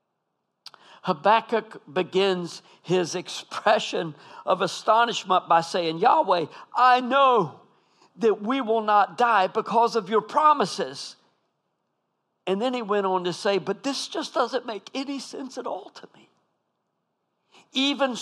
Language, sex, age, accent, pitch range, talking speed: English, male, 50-69, American, 175-230 Hz, 130 wpm